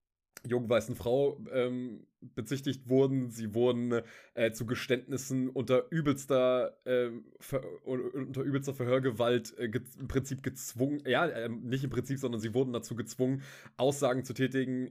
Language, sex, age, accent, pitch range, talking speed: German, male, 20-39, German, 115-125 Hz, 145 wpm